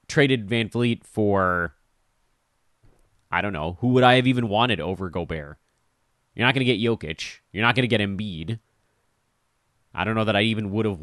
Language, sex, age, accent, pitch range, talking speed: English, male, 30-49, American, 105-135 Hz, 180 wpm